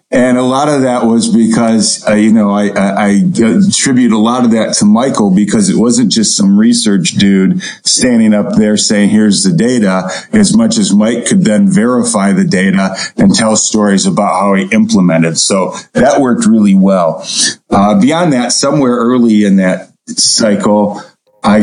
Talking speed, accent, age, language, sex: 180 wpm, American, 40-59, English, male